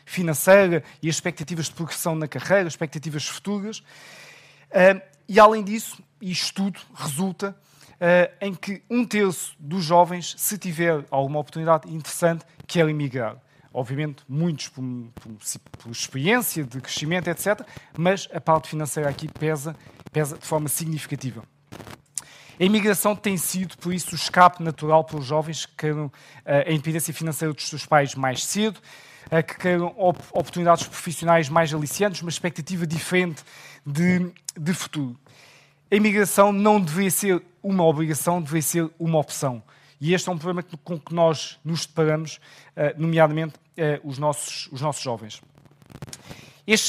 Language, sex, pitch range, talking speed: Portuguese, male, 145-180 Hz, 140 wpm